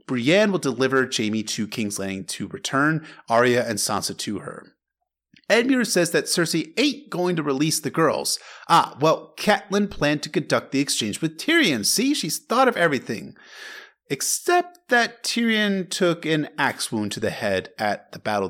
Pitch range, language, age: 110-165 Hz, English, 30-49